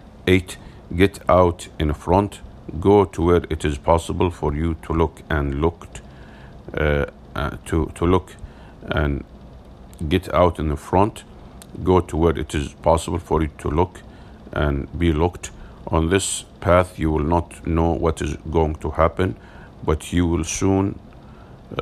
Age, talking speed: 50-69, 155 wpm